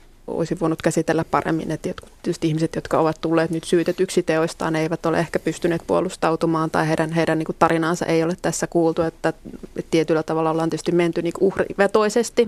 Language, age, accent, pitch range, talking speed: Finnish, 20-39, native, 165-185 Hz, 170 wpm